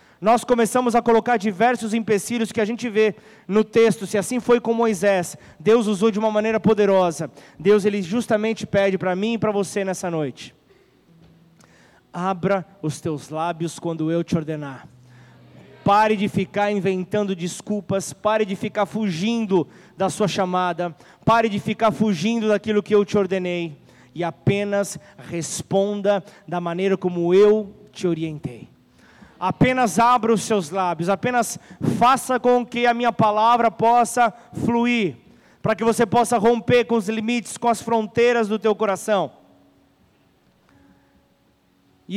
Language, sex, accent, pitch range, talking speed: Portuguese, male, Brazilian, 175-235 Hz, 145 wpm